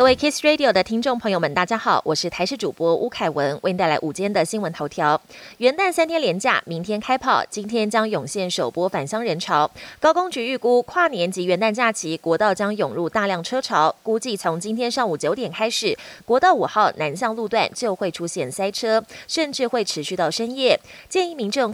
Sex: female